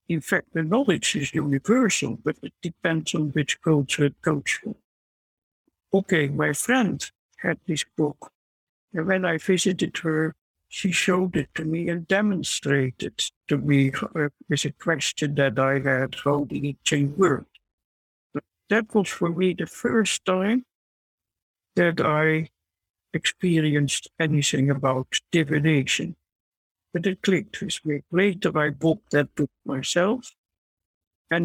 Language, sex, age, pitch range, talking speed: English, male, 60-79, 140-175 Hz, 135 wpm